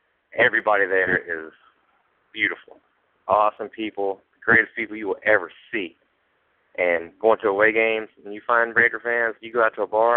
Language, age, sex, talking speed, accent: English, 30-49, male, 170 wpm, American